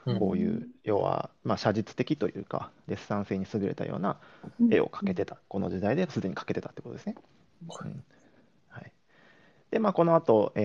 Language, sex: Japanese, male